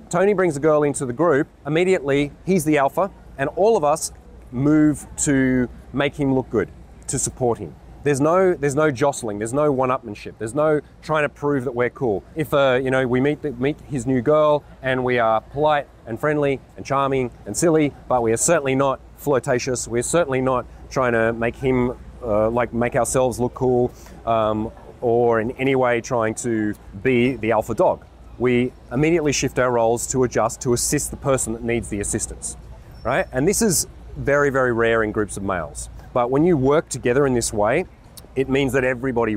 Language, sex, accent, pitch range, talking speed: English, male, Australian, 115-145 Hz, 195 wpm